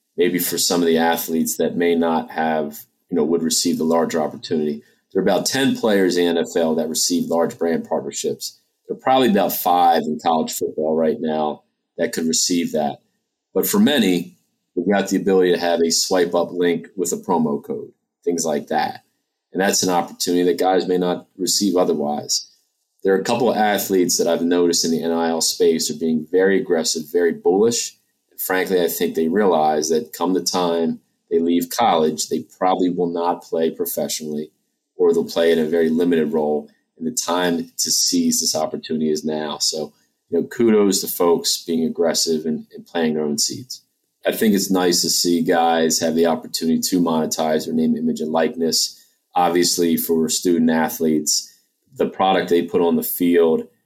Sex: male